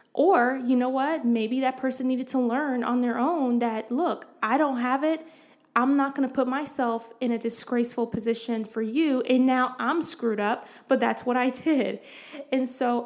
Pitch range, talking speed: 240-275 Hz, 200 wpm